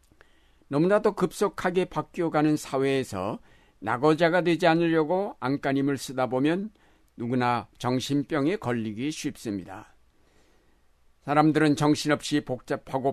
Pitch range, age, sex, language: 110-155 Hz, 60-79, male, Korean